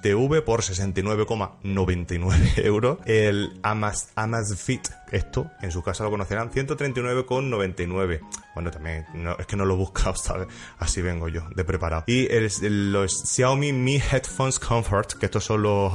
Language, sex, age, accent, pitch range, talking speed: Spanish, male, 30-49, Spanish, 95-120 Hz, 155 wpm